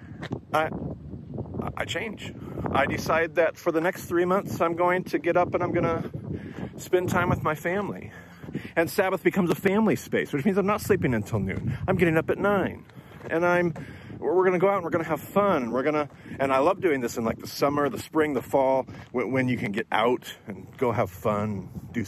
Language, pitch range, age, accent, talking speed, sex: English, 100-165 Hz, 40-59, American, 215 wpm, male